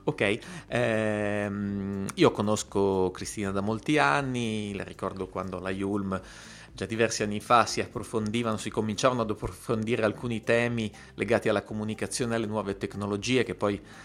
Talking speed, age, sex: 145 wpm, 30-49, male